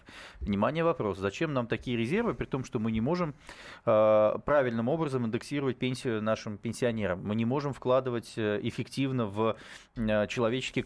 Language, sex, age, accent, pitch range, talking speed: Russian, male, 20-39, native, 115-160 Hz, 145 wpm